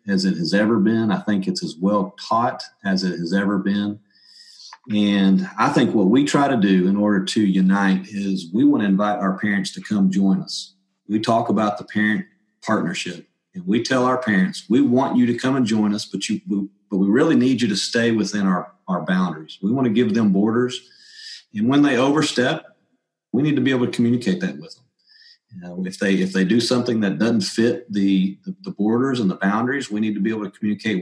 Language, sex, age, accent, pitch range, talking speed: English, male, 40-59, American, 95-145 Hz, 220 wpm